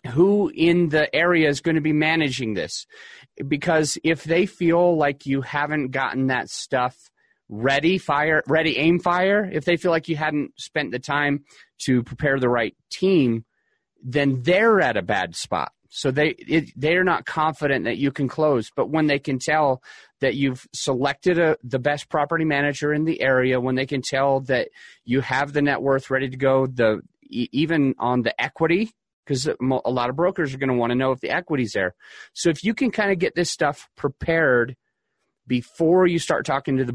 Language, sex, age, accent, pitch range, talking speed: English, male, 30-49, American, 130-165 Hz, 195 wpm